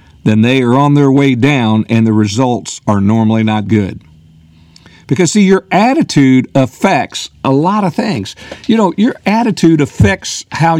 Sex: male